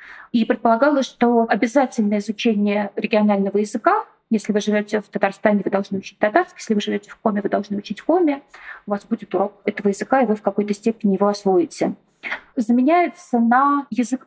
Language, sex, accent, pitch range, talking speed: Russian, female, native, 210-250 Hz, 175 wpm